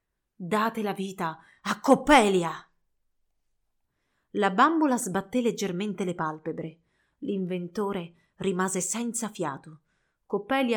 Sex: female